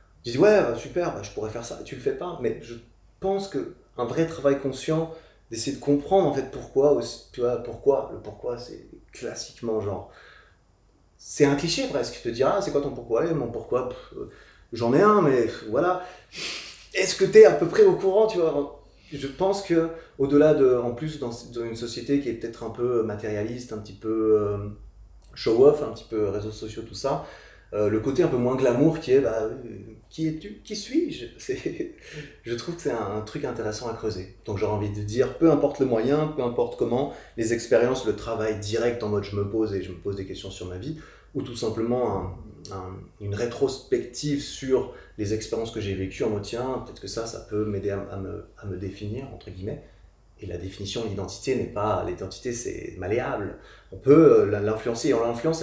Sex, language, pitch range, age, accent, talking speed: male, French, 105-145 Hz, 20-39, French, 215 wpm